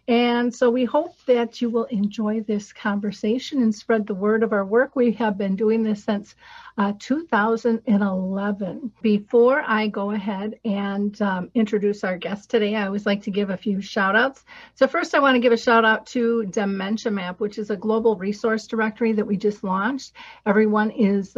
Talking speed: 190 wpm